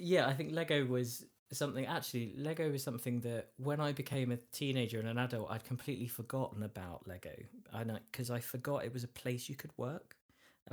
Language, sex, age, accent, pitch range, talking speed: English, male, 20-39, British, 115-135 Hz, 200 wpm